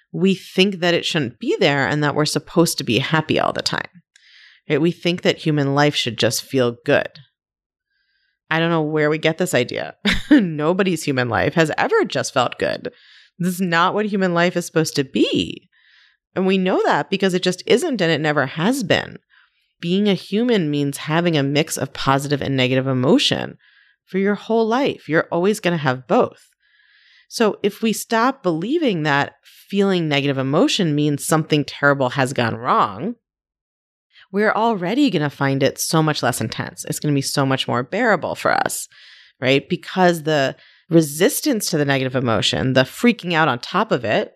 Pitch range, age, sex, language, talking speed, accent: 140-190 Hz, 30-49, female, English, 185 wpm, American